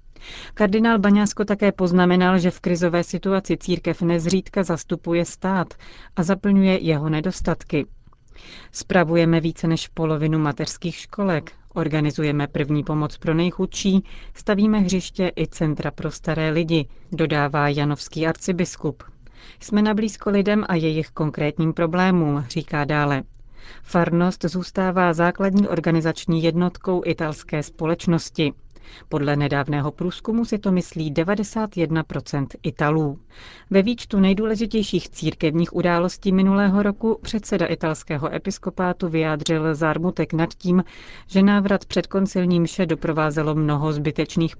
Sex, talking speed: female, 110 wpm